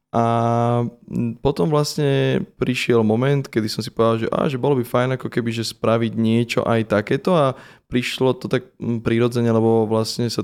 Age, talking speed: 20-39, 175 wpm